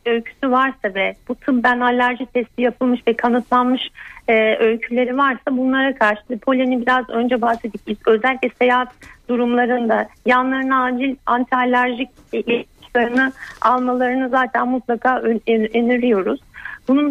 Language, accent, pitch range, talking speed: Turkish, native, 220-255 Hz, 115 wpm